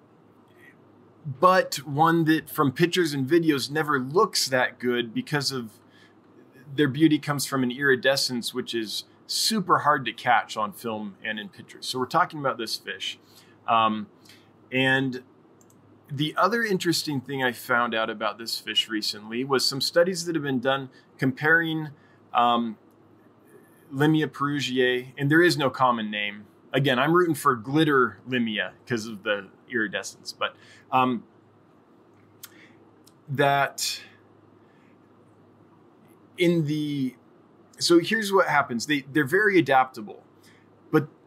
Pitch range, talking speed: 115-150 Hz, 130 wpm